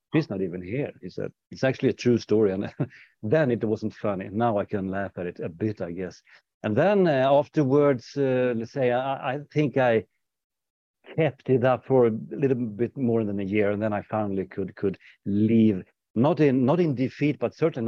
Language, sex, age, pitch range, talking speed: English, male, 60-79, 100-140 Hz, 205 wpm